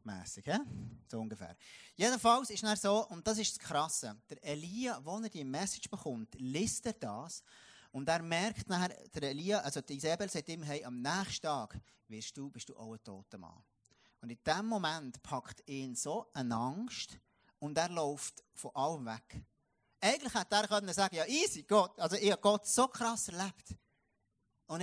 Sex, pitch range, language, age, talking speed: male, 115-190 Hz, German, 30-49, 180 wpm